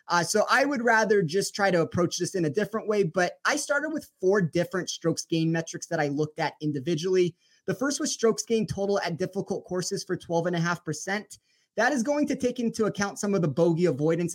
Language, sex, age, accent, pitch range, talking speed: English, male, 30-49, American, 165-200 Hz, 215 wpm